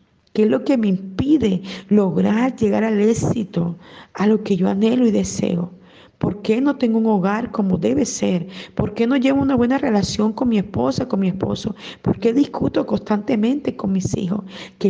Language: Spanish